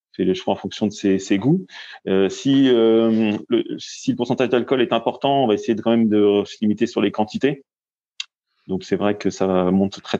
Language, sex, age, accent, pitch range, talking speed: French, male, 30-49, French, 95-115 Hz, 225 wpm